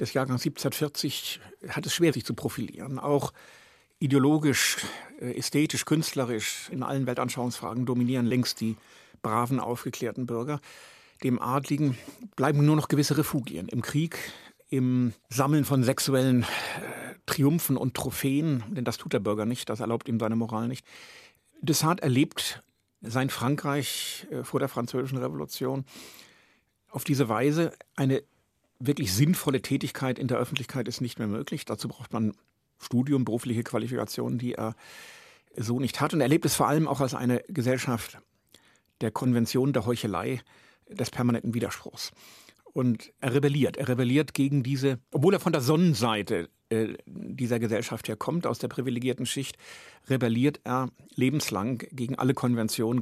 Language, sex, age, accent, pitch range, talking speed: German, male, 60-79, German, 120-140 Hz, 145 wpm